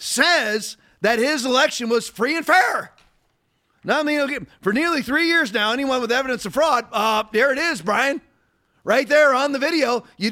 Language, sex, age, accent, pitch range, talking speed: English, male, 40-59, American, 225-280 Hz, 190 wpm